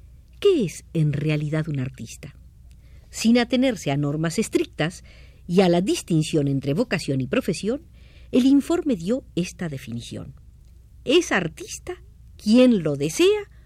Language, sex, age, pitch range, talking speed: Spanish, female, 50-69, 150-250 Hz, 125 wpm